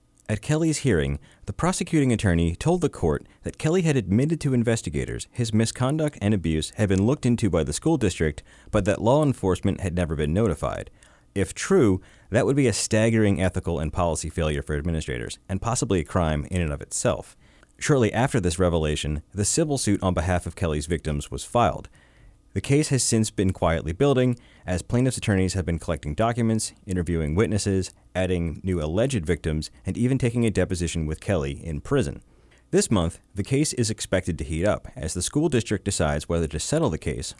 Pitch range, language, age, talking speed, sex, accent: 85-115 Hz, English, 30-49, 190 wpm, male, American